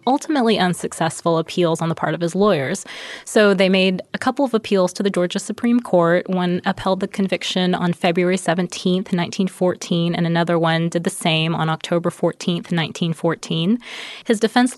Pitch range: 170-210 Hz